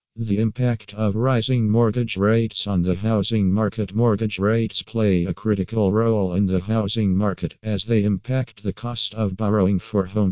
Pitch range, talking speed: 95-110 Hz, 170 wpm